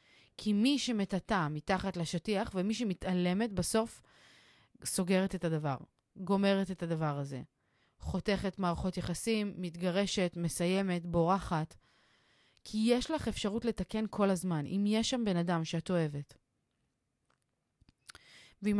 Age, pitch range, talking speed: 30-49, 165-200 Hz, 115 wpm